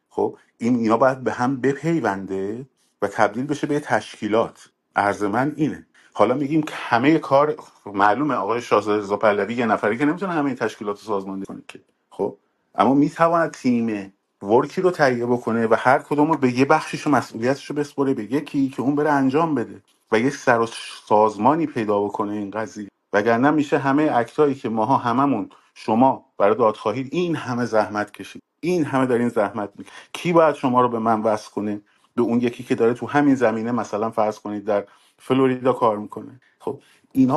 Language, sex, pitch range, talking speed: Persian, male, 105-145 Hz, 180 wpm